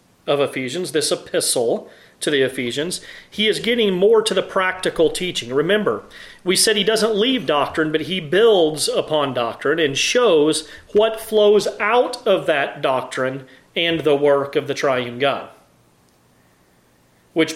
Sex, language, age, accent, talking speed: male, English, 40-59, American, 145 wpm